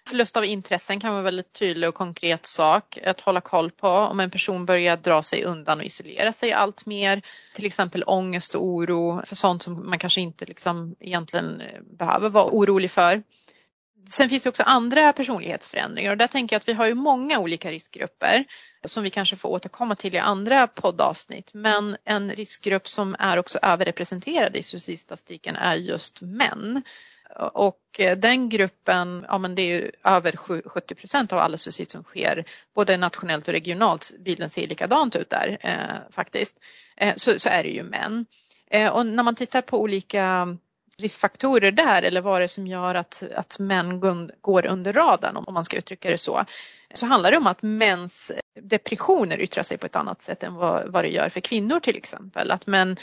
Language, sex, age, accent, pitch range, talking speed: Swedish, female, 30-49, native, 180-220 Hz, 185 wpm